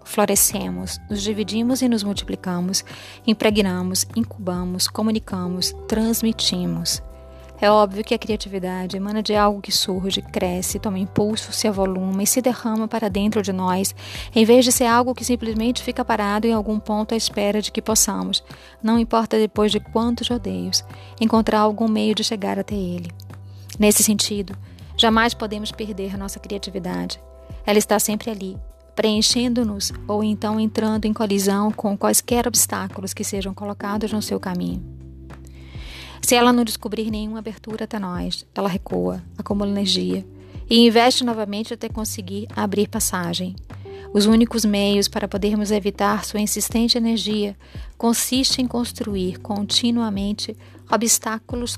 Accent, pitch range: Brazilian, 185-220 Hz